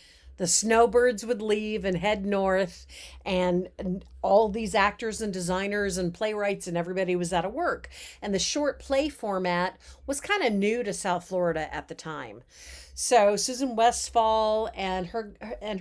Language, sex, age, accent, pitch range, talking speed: English, female, 50-69, American, 180-225 Hz, 160 wpm